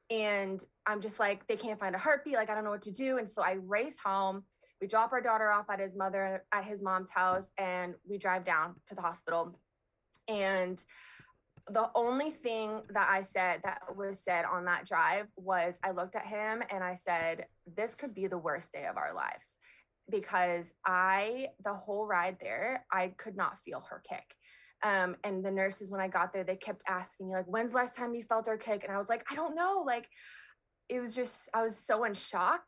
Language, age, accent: English, 20-39, American